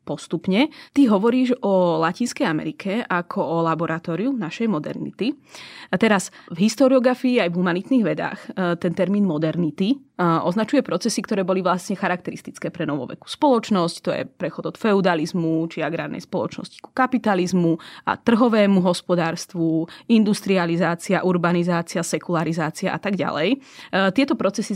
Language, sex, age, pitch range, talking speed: Slovak, female, 20-39, 170-210 Hz, 125 wpm